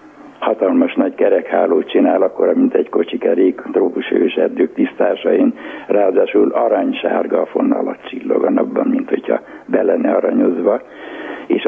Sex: male